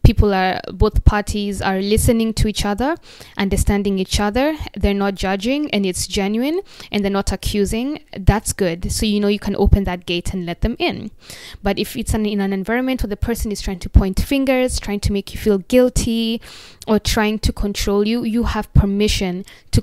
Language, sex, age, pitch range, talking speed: English, female, 20-39, 190-225 Hz, 200 wpm